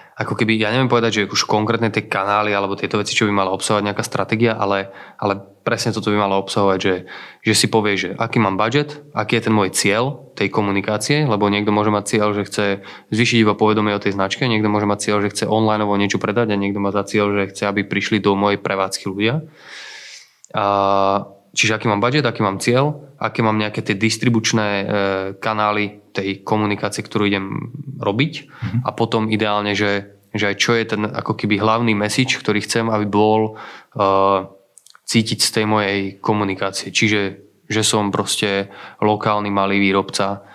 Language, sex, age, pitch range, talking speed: Slovak, male, 20-39, 100-110 Hz, 185 wpm